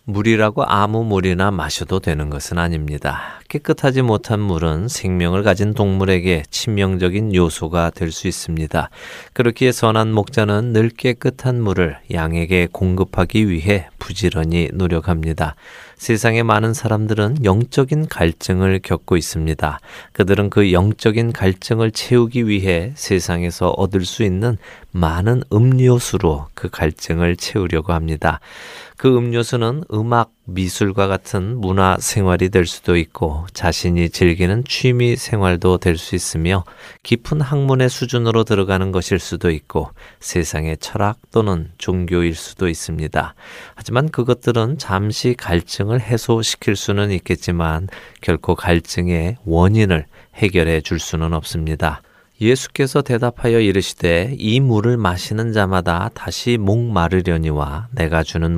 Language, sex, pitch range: Korean, male, 85-115 Hz